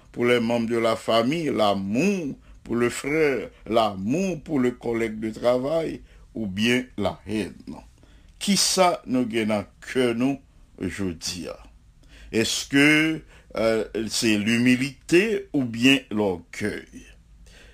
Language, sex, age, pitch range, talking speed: English, male, 60-79, 110-155 Hz, 120 wpm